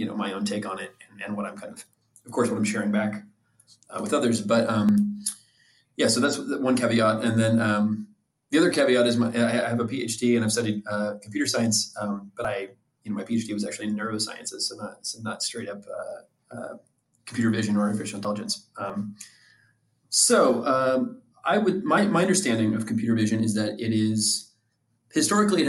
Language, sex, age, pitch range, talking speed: English, male, 20-39, 110-120 Hz, 210 wpm